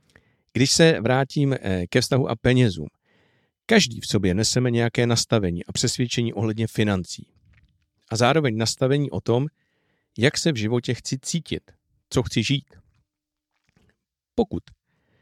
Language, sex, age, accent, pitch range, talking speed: Czech, male, 50-69, native, 100-130 Hz, 125 wpm